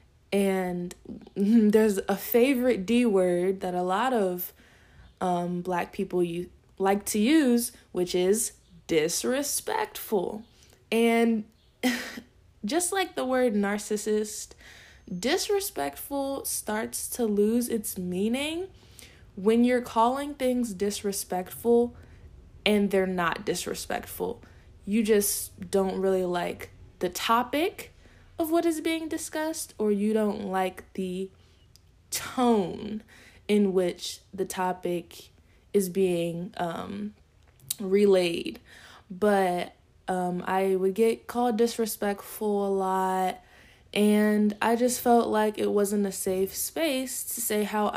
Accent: American